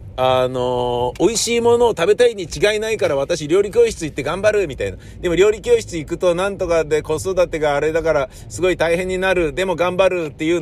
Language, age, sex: Japanese, 50-69, male